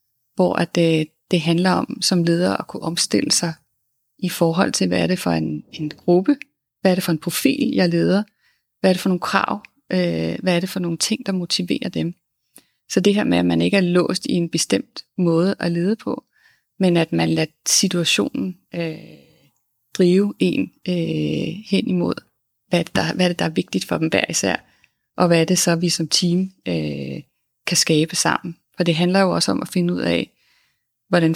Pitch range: 150-180 Hz